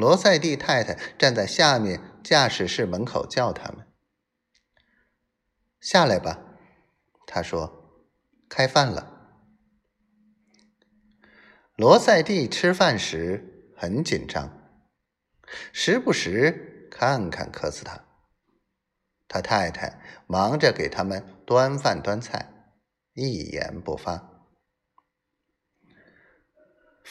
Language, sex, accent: Chinese, male, native